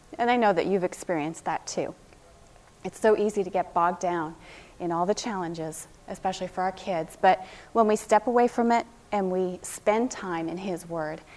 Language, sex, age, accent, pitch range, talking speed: English, female, 30-49, American, 175-235 Hz, 195 wpm